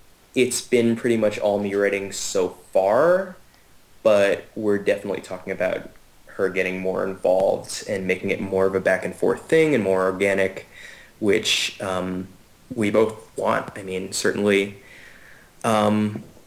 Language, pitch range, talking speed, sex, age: English, 100-115 Hz, 145 wpm, male, 20-39